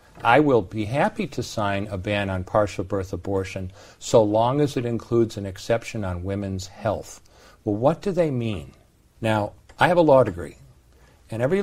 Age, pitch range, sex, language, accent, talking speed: 50-69, 100-130 Hz, male, English, American, 180 wpm